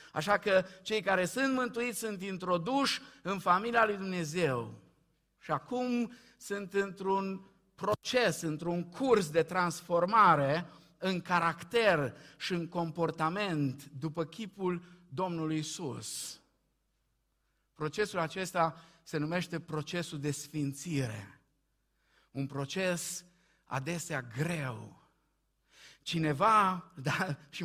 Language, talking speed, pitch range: Romanian, 95 wpm, 150-190 Hz